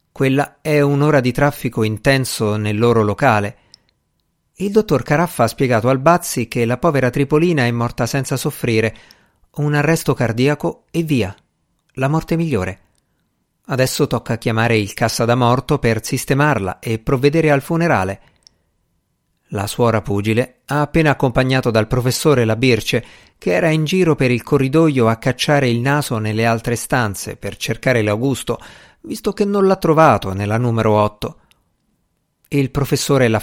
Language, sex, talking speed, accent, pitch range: Italian, male, 150 wpm, native, 115-145 Hz